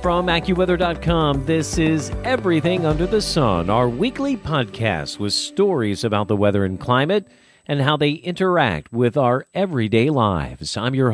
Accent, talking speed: American, 150 wpm